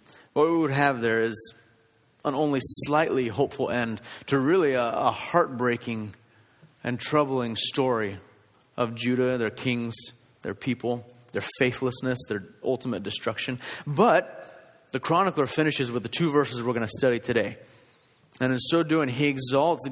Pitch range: 115-140 Hz